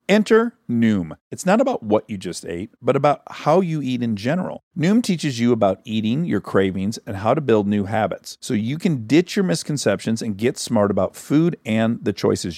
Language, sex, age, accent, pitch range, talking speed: English, male, 50-69, American, 105-160 Hz, 205 wpm